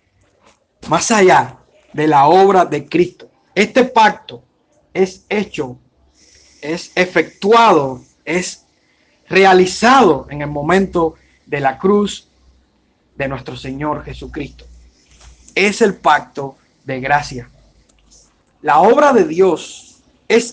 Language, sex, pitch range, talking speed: Spanish, male, 135-200 Hz, 100 wpm